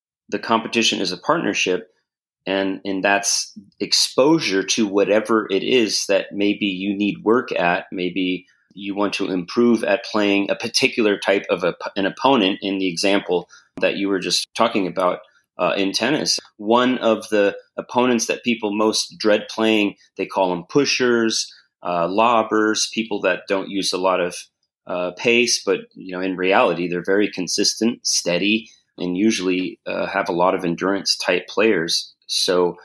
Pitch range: 90-110 Hz